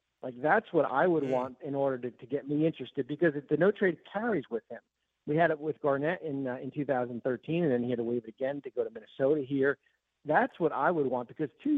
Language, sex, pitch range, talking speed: English, male, 130-170 Hz, 255 wpm